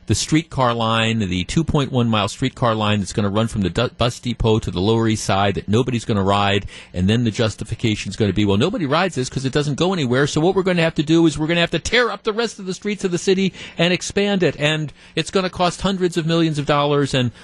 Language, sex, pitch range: English, male, 110-155 Hz